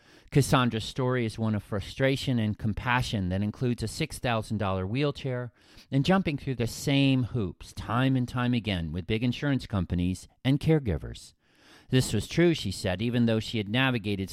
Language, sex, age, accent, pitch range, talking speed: English, male, 40-59, American, 95-130 Hz, 165 wpm